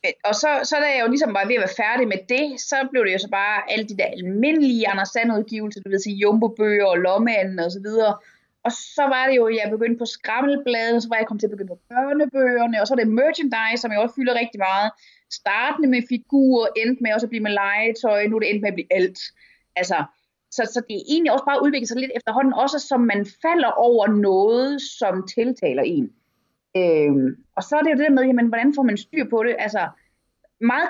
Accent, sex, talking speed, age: native, female, 235 wpm, 30-49